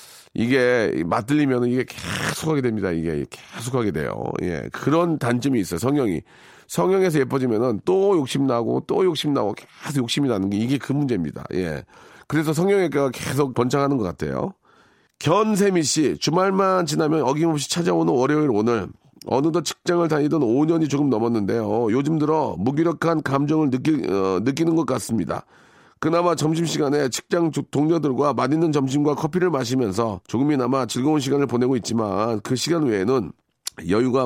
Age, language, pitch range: 40-59, Korean, 115-160 Hz